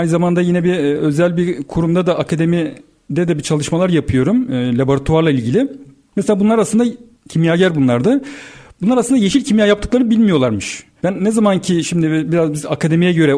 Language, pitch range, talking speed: Turkish, 150-210 Hz, 155 wpm